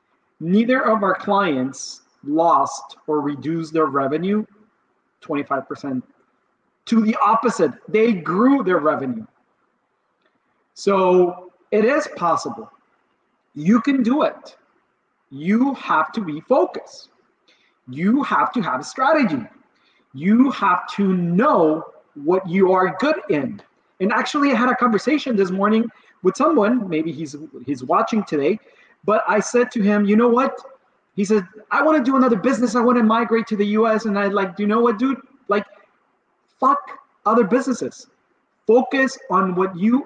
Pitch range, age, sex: 190-255 Hz, 40-59, male